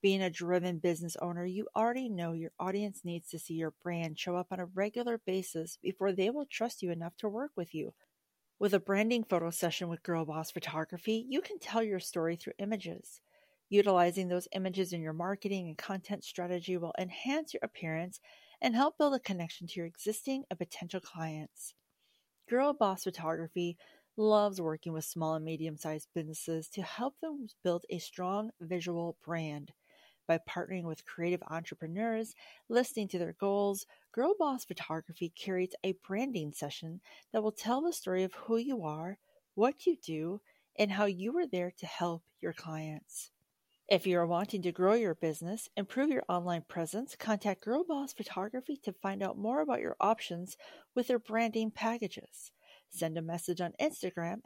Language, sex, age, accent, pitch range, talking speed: English, female, 40-59, American, 170-220 Hz, 175 wpm